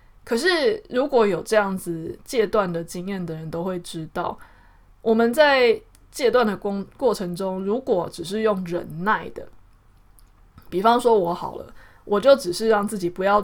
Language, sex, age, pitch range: Chinese, female, 20-39, 170-215 Hz